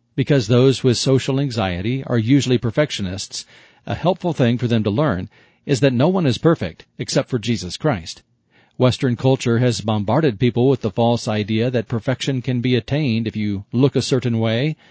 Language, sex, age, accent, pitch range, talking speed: English, male, 40-59, American, 110-135 Hz, 180 wpm